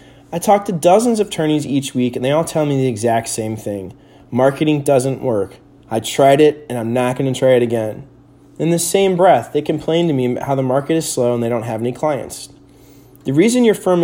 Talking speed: 235 wpm